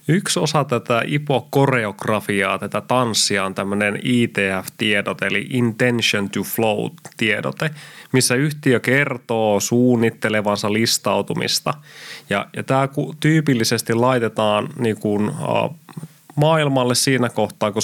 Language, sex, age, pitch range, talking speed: Finnish, male, 20-39, 110-130 Hz, 100 wpm